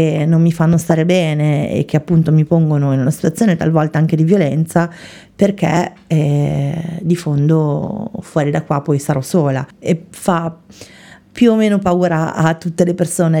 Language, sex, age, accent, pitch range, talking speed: Italian, female, 30-49, native, 155-175 Hz, 165 wpm